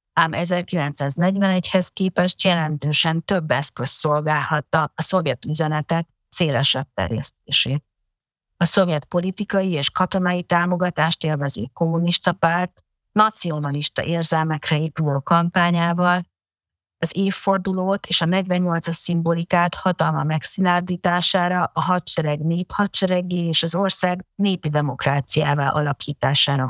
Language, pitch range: Hungarian, 155-180 Hz